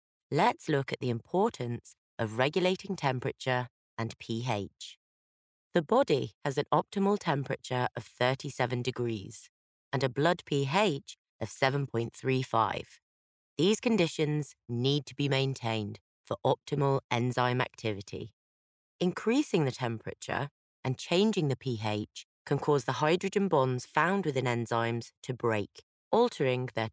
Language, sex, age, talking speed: English, female, 30-49, 120 wpm